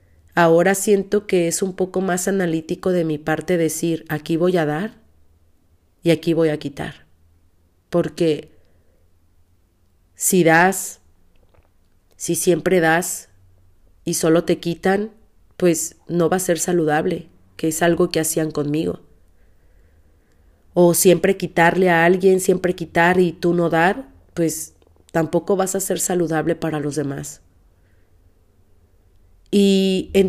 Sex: female